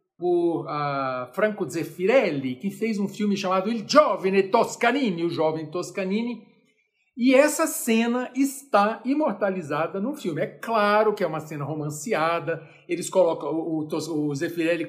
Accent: Brazilian